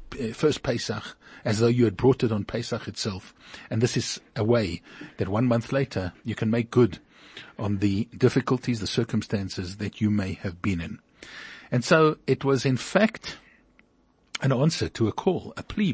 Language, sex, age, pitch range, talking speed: English, male, 50-69, 110-145 Hz, 180 wpm